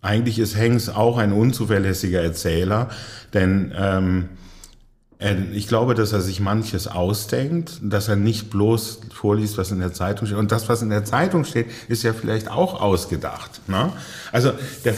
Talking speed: 165 wpm